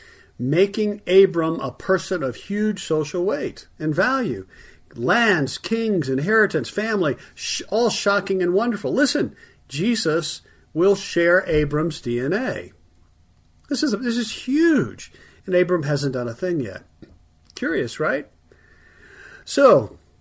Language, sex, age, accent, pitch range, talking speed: English, male, 50-69, American, 135-195 Hz, 120 wpm